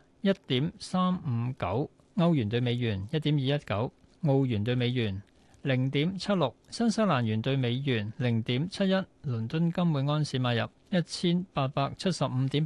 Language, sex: Chinese, male